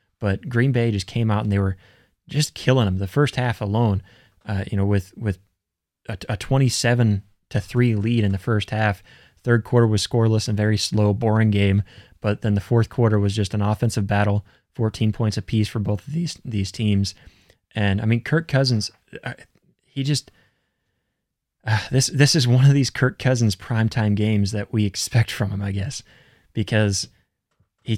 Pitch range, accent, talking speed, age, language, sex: 100-120 Hz, American, 185 wpm, 20-39, English, male